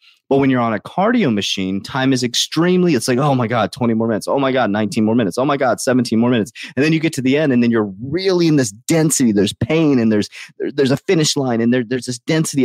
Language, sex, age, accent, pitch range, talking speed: English, male, 30-49, American, 115-155 Hz, 265 wpm